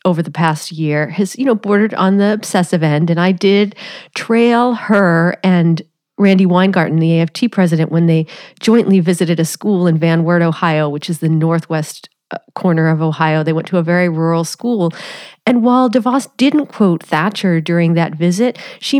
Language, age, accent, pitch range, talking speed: English, 40-59, American, 165-215 Hz, 180 wpm